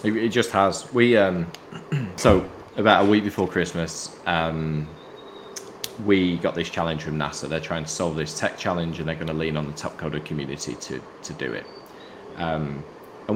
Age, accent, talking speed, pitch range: 20-39, British, 185 wpm, 75-90 Hz